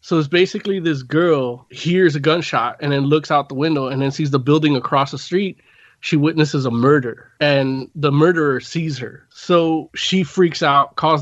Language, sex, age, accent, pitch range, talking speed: English, male, 20-39, American, 140-170 Hz, 195 wpm